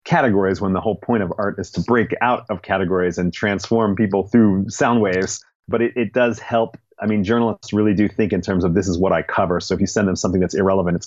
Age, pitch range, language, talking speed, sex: 30-49, 95-110 Hz, English, 255 wpm, male